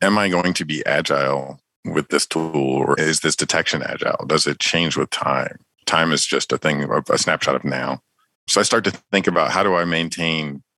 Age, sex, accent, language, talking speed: 50-69, male, American, English, 215 wpm